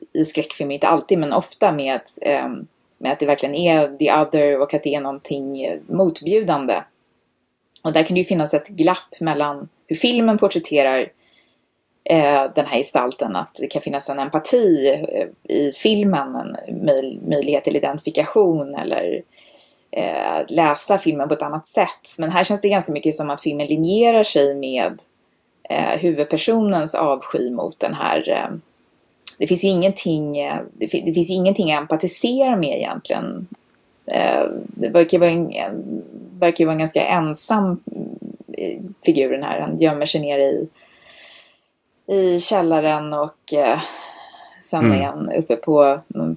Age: 20-39